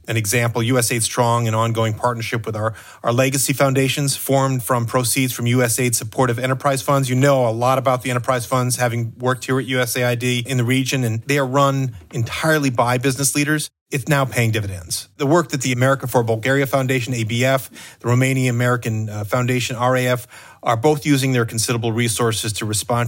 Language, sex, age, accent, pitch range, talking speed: English, male, 30-49, American, 115-135 Hz, 175 wpm